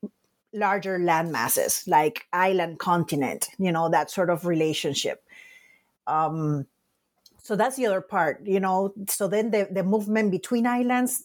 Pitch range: 165-220 Hz